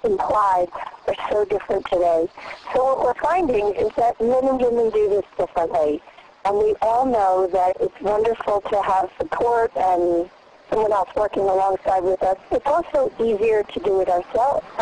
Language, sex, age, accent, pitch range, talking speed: English, female, 50-69, American, 180-235 Hz, 165 wpm